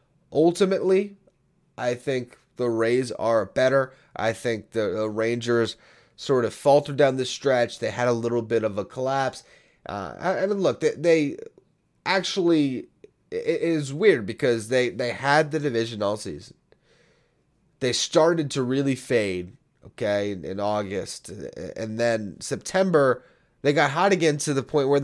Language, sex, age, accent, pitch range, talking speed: English, male, 30-49, American, 115-155 Hz, 150 wpm